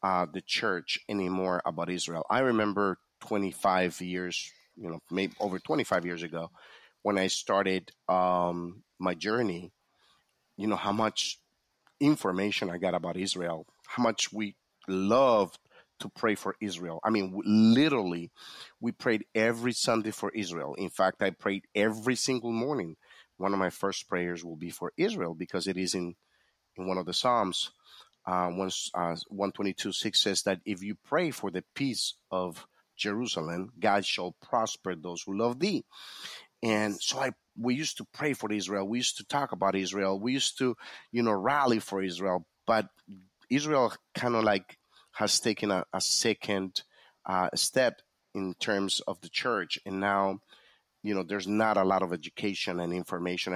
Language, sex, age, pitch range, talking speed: English, male, 30-49, 90-105 Hz, 165 wpm